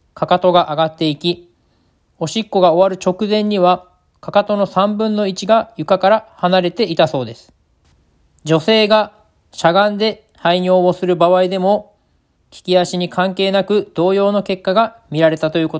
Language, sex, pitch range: Japanese, male, 160-200 Hz